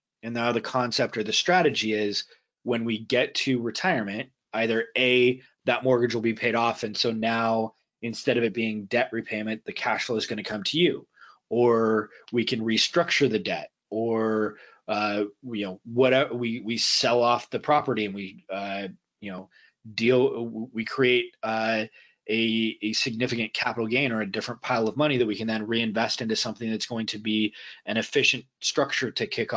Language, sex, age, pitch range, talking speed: English, male, 20-39, 110-130 Hz, 190 wpm